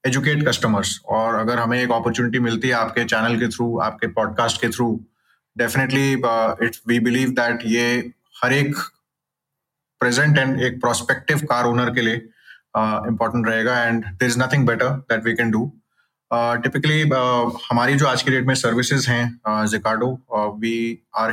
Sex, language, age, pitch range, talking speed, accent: male, Hindi, 20-39, 110-125 Hz, 155 wpm, native